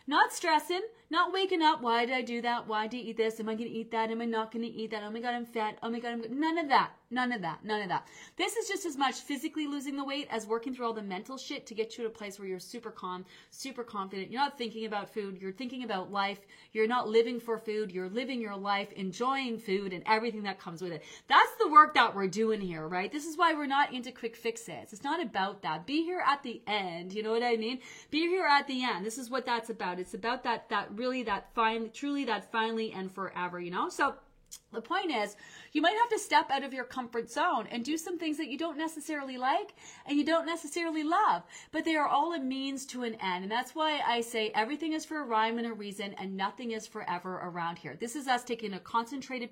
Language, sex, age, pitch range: English, female, 30-49, 205-280 Hz